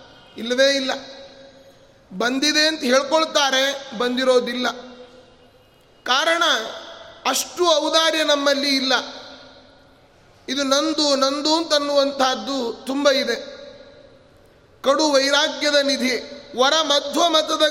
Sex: male